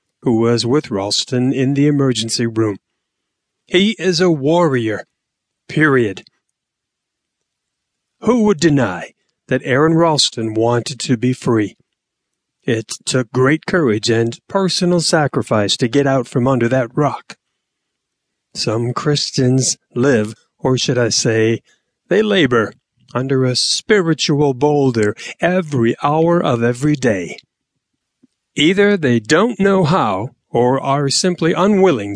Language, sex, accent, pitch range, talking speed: English, male, American, 120-160 Hz, 120 wpm